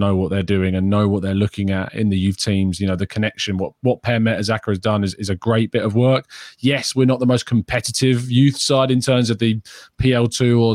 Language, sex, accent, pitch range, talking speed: English, male, British, 105-130 Hz, 250 wpm